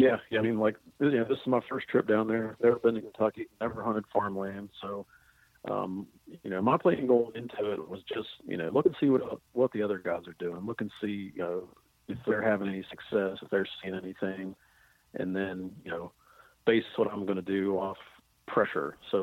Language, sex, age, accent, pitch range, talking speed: English, male, 40-59, American, 95-115 Hz, 220 wpm